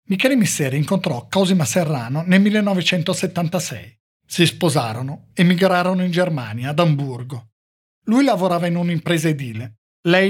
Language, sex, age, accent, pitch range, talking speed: Italian, male, 50-69, native, 135-180 Hz, 120 wpm